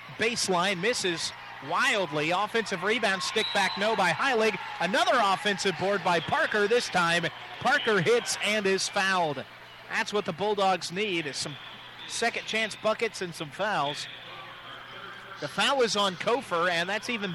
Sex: male